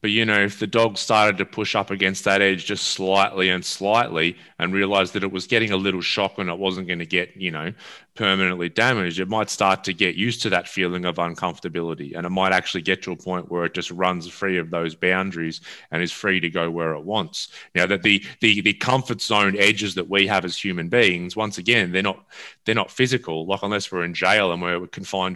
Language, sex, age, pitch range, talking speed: English, male, 20-39, 90-100 Hz, 240 wpm